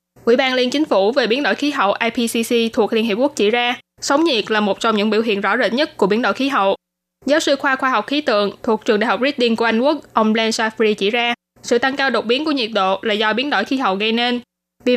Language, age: Vietnamese, 10-29